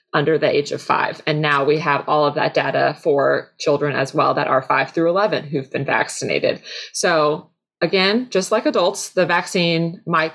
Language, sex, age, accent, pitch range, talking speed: English, female, 20-39, American, 155-180 Hz, 190 wpm